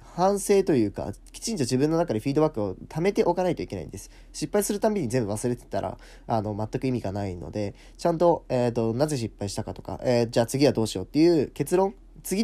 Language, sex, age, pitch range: Japanese, male, 10-29, 105-140 Hz